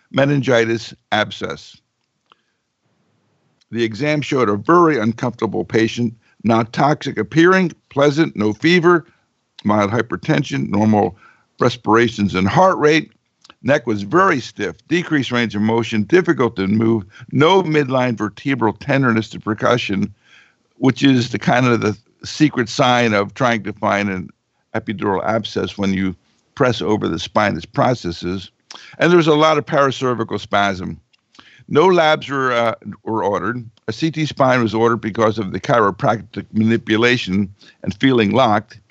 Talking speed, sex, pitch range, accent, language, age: 135 wpm, male, 105-140 Hz, American, English, 60-79